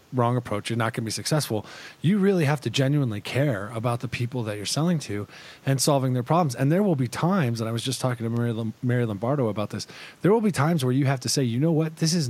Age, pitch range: 30-49, 120-150 Hz